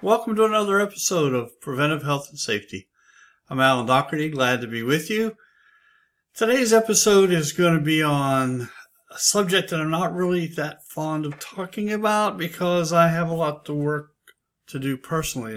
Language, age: English, 60-79